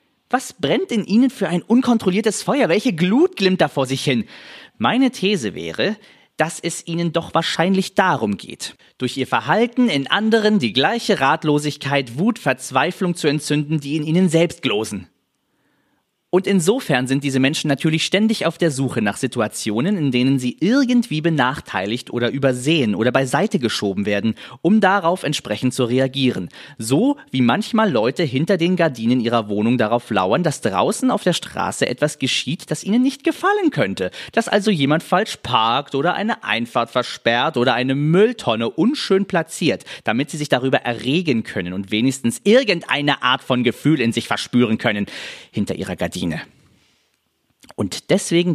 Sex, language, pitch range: male, German, 130-205 Hz